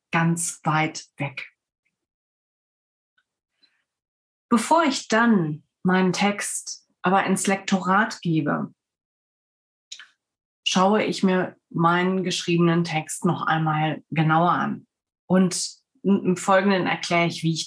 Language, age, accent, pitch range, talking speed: German, 30-49, German, 185-225 Hz, 100 wpm